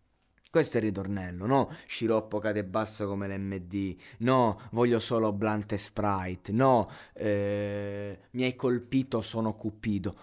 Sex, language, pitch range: male, Italian, 115-160 Hz